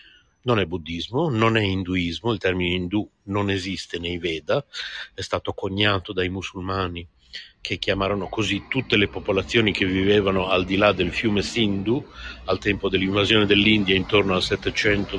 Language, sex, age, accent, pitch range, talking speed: Italian, male, 50-69, native, 100-165 Hz, 155 wpm